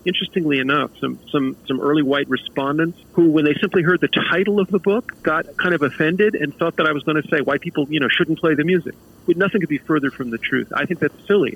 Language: English